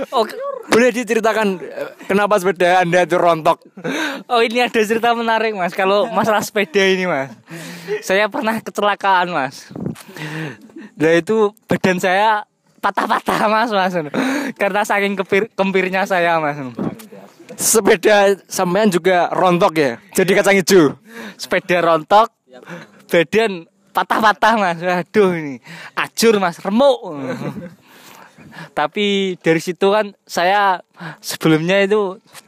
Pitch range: 170-215 Hz